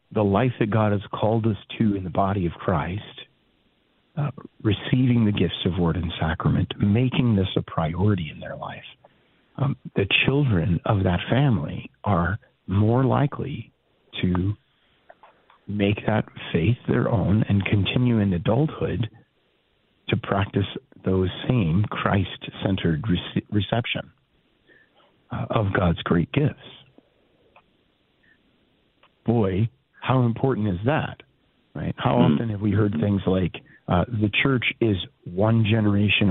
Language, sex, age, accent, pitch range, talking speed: English, male, 50-69, American, 95-115 Hz, 125 wpm